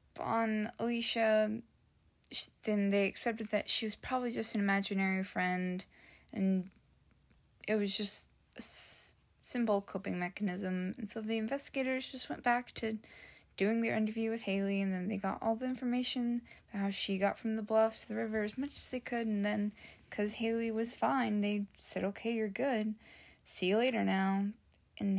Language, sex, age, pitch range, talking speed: English, female, 10-29, 195-225 Hz, 170 wpm